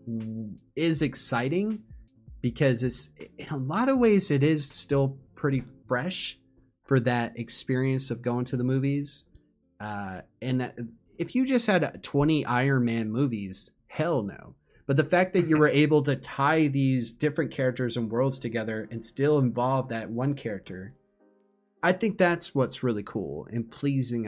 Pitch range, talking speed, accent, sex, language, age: 115-145 Hz, 160 wpm, American, male, English, 20-39